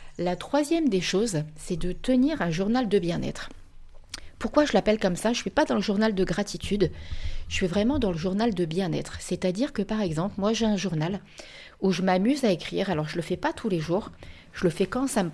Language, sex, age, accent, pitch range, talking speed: French, female, 40-59, French, 175-230 Hz, 240 wpm